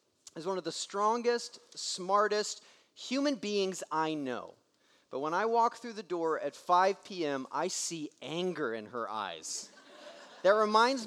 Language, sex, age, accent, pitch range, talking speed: English, male, 30-49, American, 175-240 Hz, 150 wpm